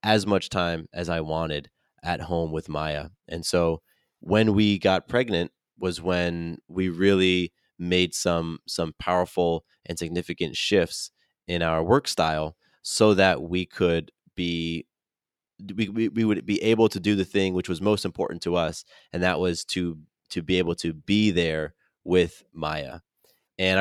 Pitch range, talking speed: 80-95 Hz, 160 wpm